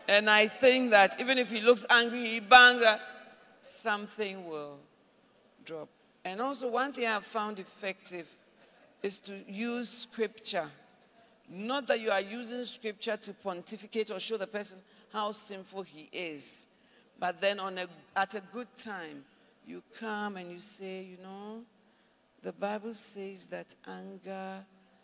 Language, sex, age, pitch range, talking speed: English, female, 50-69, 185-220 Hz, 145 wpm